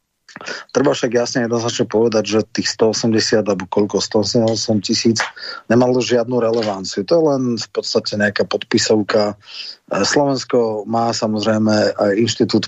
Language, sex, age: Slovak, male, 30-49